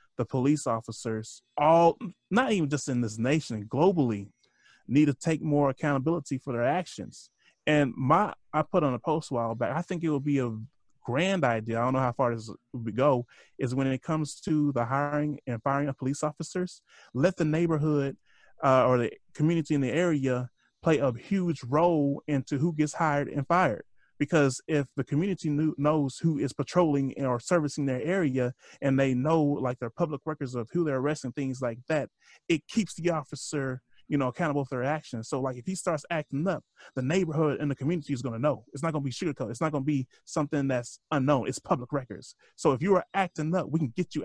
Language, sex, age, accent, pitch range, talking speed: English, male, 30-49, American, 130-155 Hz, 215 wpm